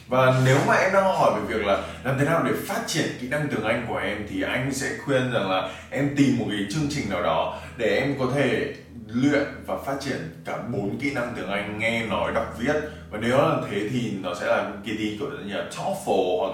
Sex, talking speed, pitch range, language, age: male, 245 wpm, 105-145 Hz, Vietnamese, 20-39